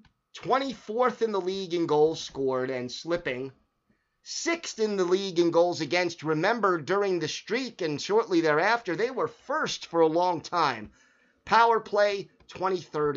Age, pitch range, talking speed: 30-49, 140-200 Hz, 150 wpm